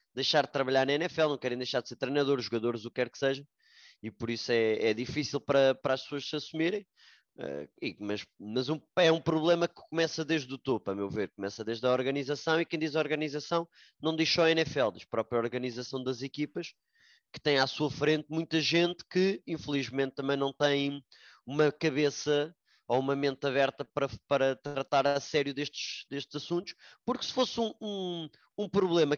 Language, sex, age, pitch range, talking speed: English, male, 20-39, 135-160 Hz, 190 wpm